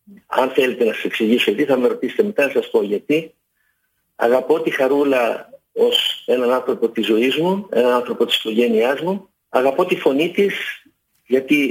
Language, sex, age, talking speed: Greek, male, 50-69, 165 wpm